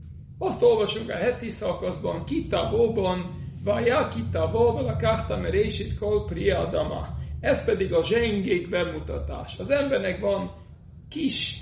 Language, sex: Hungarian, male